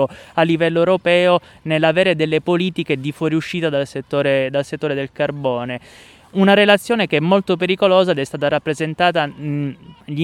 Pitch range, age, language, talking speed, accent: 145-170 Hz, 20-39, Italian, 145 wpm, native